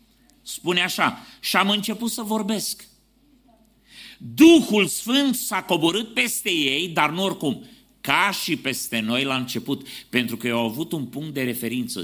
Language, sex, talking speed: Romanian, male, 150 wpm